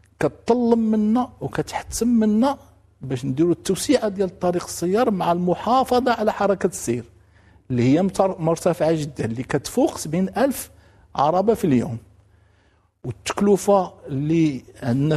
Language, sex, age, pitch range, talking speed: English, male, 50-69, 105-170 Hz, 115 wpm